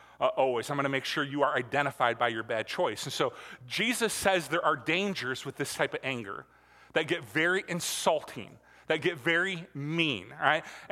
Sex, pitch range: male, 135-180 Hz